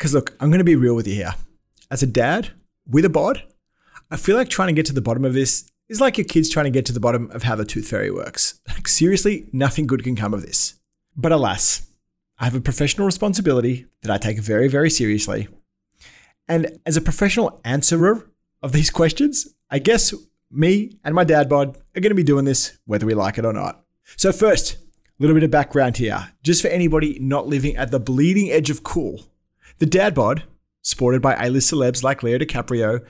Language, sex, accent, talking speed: English, male, Australian, 215 wpm